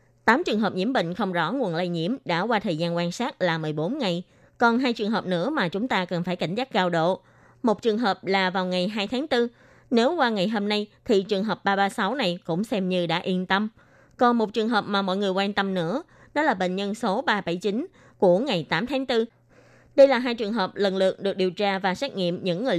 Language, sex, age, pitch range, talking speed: Vietnamese, female, 20-39, 185-235 Hz, 250 wpm